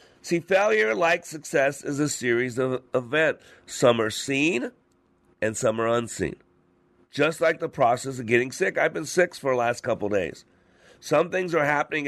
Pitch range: 125-160 Hz